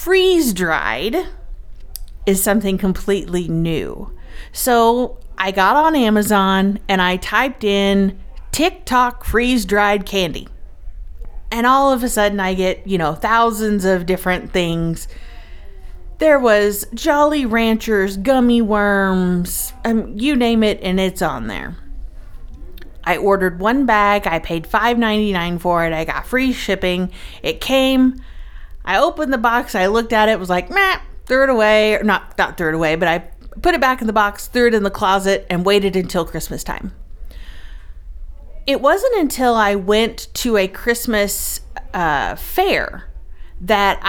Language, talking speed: English, 145 wpm